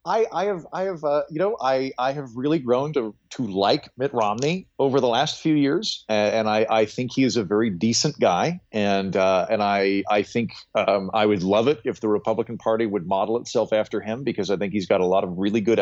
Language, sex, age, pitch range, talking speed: English, male, 40-59, 110-145 Hz, 245 wpm